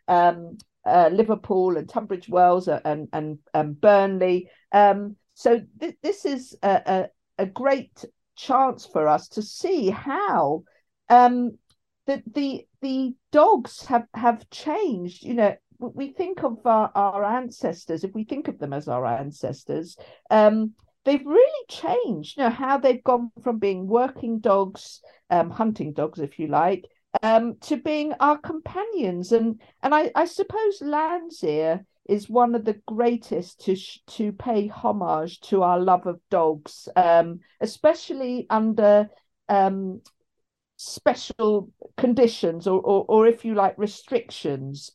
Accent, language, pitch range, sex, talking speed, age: British, English, 190-265 Hz, female, 145 wpm, 50-69